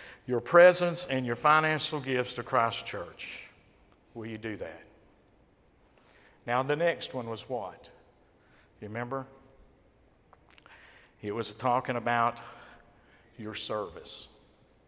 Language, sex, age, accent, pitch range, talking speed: English, male, 50-69, American, 115-155 Hz, 110 wpm